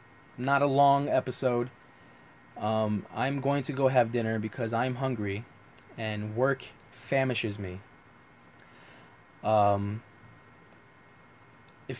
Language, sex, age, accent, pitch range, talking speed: English, male, 20-39, American, 125-155 Hz, 100 wpm